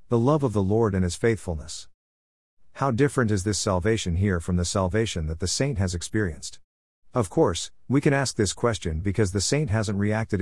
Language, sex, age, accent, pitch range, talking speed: English, male, 50-69, American, 85-110 Hz, 195 wpm